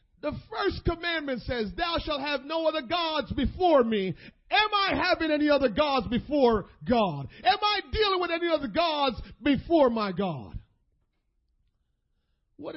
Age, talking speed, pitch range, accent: 40-59, 145 wpm, 205-315 Hz, American